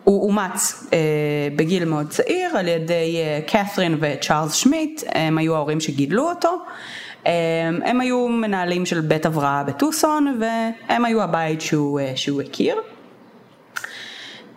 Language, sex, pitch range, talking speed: Hebrew, female, 150-220 Hz, 130 wpm